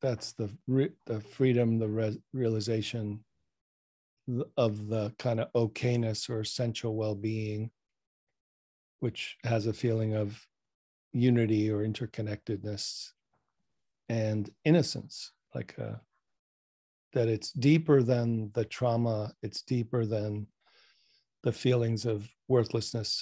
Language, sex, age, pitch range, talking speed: English, male, 50-69, 110-125 Hz, 105 wpm